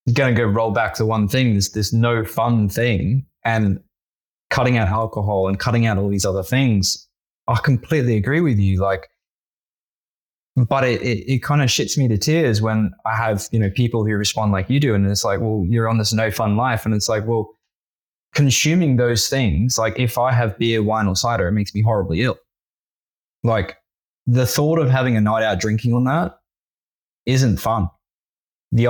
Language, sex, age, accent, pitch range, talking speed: English, male, 20-39, Australian, 100-120 Hz, 195 wpm